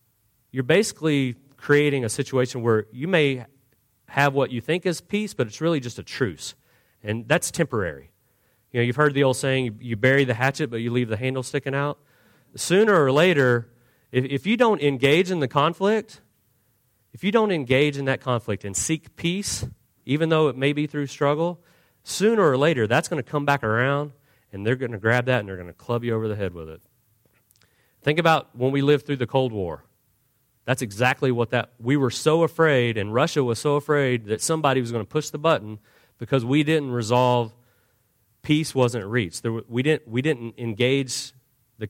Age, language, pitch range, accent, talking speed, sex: 40-59, English, 115-140 Hz, American, 200 wpm, male